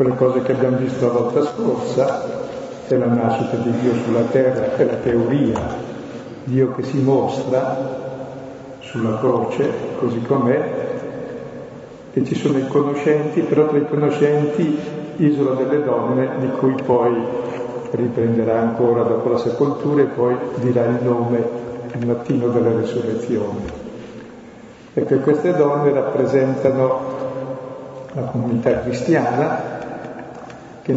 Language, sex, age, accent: Italian, male, 50-69, native